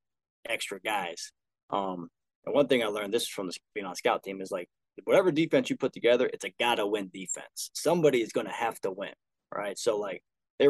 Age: 20-39